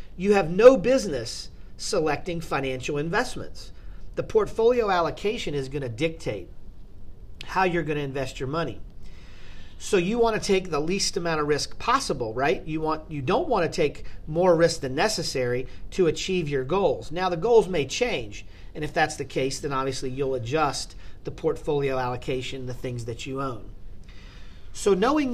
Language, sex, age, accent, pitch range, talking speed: English, male, 40-59, American, 120-180 Hz, 170 wpm